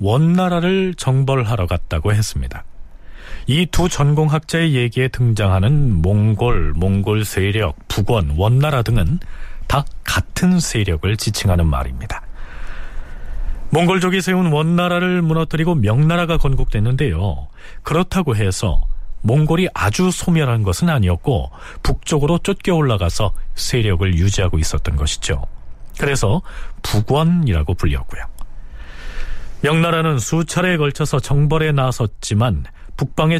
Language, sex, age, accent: Korean, male, 40-59, native